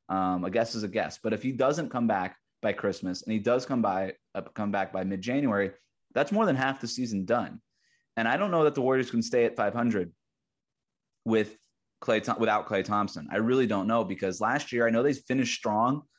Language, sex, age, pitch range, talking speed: English, male, 20-39, 100-125 Hz, 220 wpm